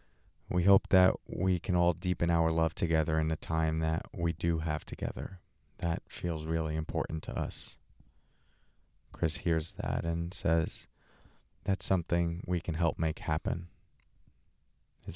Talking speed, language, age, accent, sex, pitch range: 145 wpm, English, 20-39, American, male, 85-100 Hz